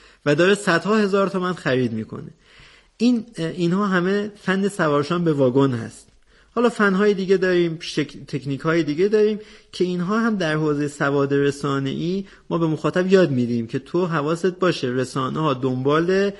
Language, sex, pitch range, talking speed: Persian, male, 125-175 Hz, 170 wpm